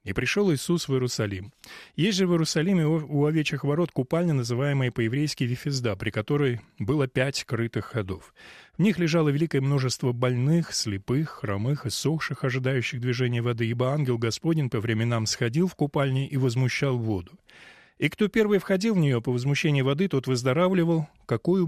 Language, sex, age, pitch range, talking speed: Russian, male, 20-39, 120-160 Hz, 160 wpm